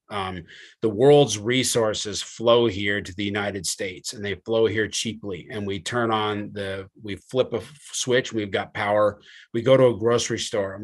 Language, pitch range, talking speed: English, 105-135 Hz, 190 wpm